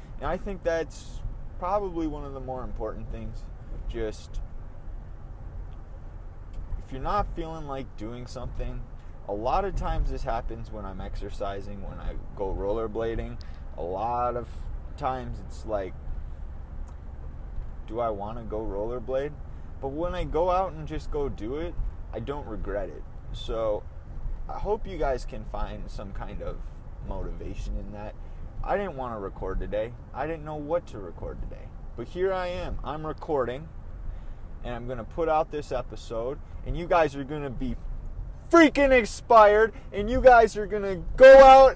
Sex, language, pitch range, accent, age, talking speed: male, English, 100-165 Hz, American, 30-49, 165 wpm